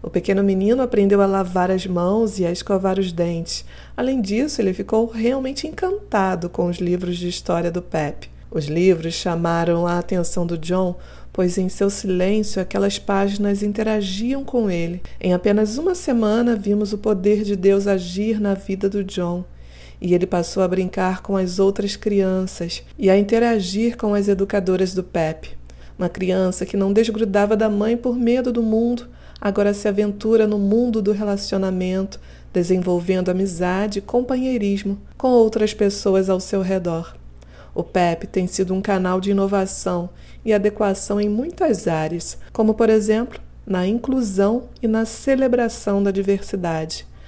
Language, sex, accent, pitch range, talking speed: Portuguese, female, Brazilian, 185-220 Hz, 155 wpm